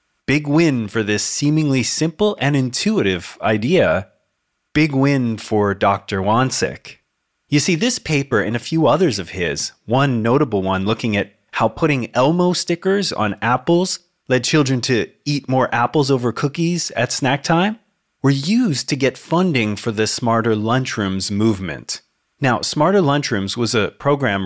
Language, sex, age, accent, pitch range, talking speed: English, male, 30-49, American, 110-150 Hz, 150 wpm